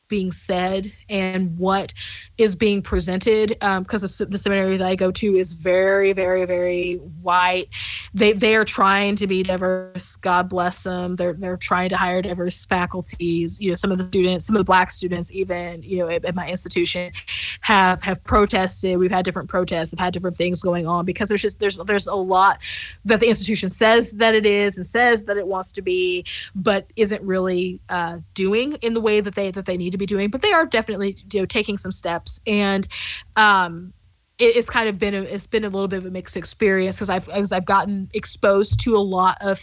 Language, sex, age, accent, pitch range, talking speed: English, female, 20-39, American, 180-210 Hz, 215 wpm